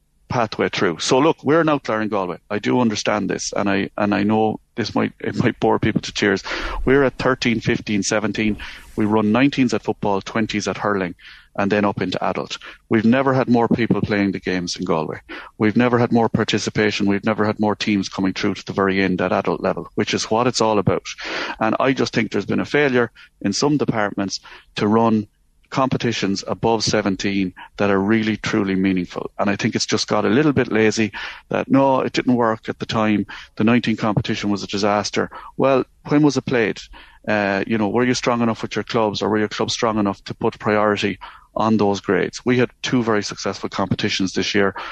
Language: English